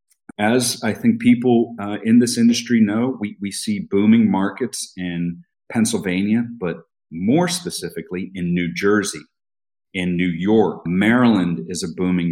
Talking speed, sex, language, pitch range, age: 140 wpm, male, English, 90-115 Hz, 50-69